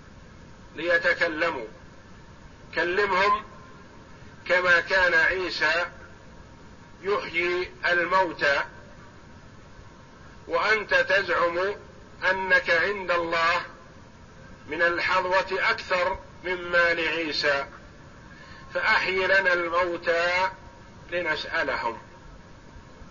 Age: 50-69